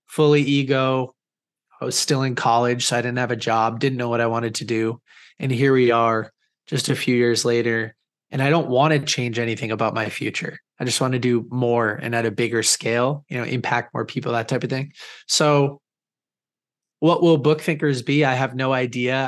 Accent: American